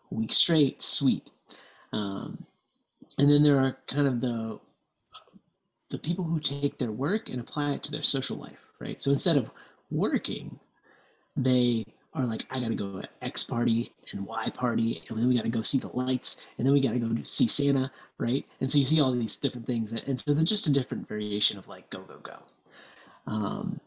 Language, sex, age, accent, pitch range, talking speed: English, male, 20-39, American, 115-140 Hz, 200 wpm